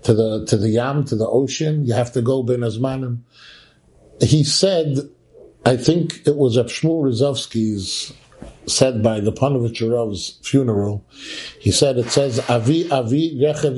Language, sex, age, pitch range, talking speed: English, male, 50-69, 120-145 Hz, 150 wpm